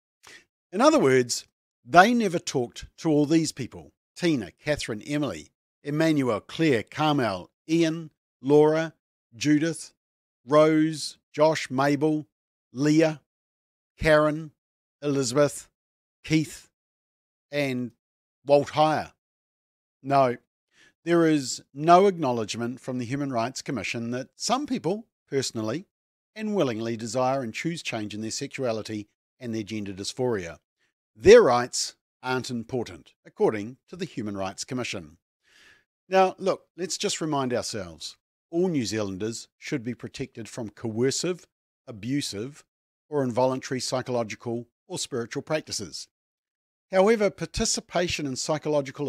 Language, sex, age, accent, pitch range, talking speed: English, male, 50-69, Australian, 120-160 Hz, 110 wpm